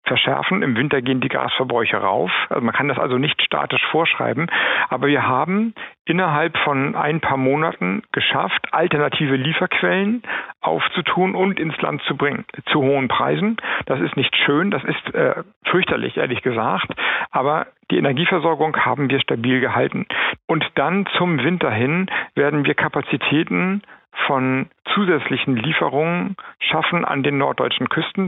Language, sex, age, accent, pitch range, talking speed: German, male, 50-69, German, 135-170 Hz, 145 wpm